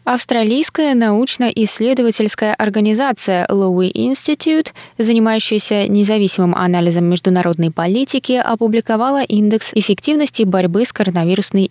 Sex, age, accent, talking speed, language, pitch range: female, 20-39, native, 80 wpm, Russian, 180-230 Hz